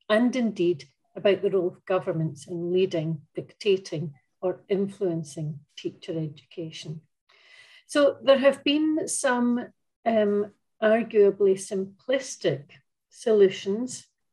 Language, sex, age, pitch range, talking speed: English, female, 40-59, 180-215 Hz, 95 wpm